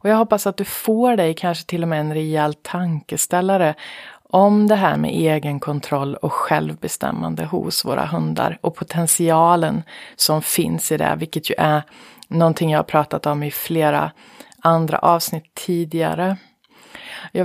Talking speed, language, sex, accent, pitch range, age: 155 wpm, English, female, Swedish, 150-180 Hz, 30-49